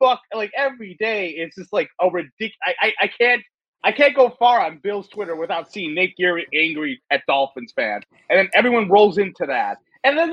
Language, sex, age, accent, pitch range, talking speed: English, male, 30-49, American, 165-255 Hz, 210 wpm